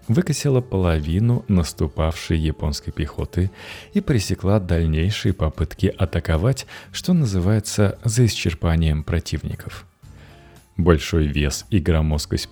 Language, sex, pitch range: Russian, male, 80-110 Hz